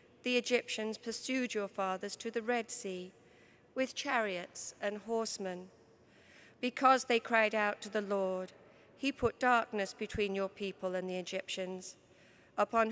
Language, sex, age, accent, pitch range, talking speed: English, female, 40-59, British, 195-230 Hz, 140 wpm